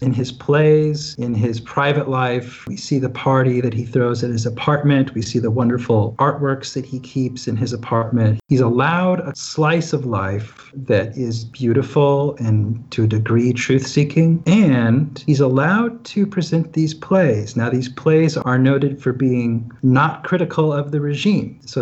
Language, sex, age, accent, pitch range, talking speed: English, male, 40-59, American, 120-155 Hz, 170 wpm